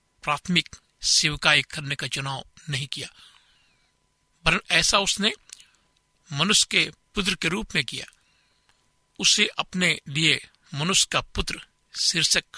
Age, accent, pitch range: 60-79, native, 145-180 Hz